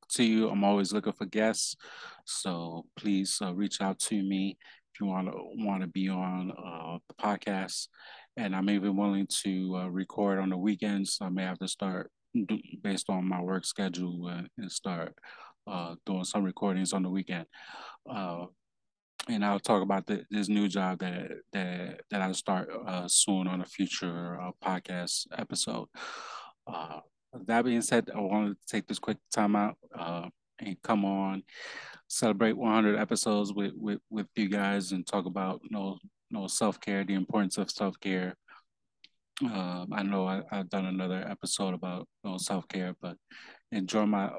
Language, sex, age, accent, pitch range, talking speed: English, male, 20-39, American, 95-105 Hz, 175 wpm